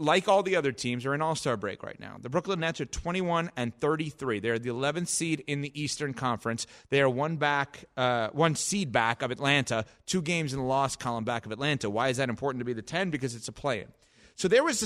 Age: 30-49